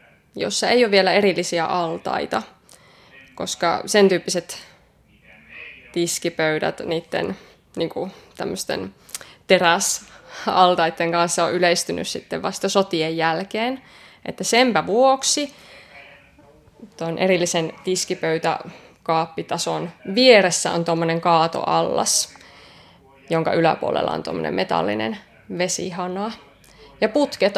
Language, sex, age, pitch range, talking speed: Finnish, female, 20-39, 170-205 Hz, 90 wpm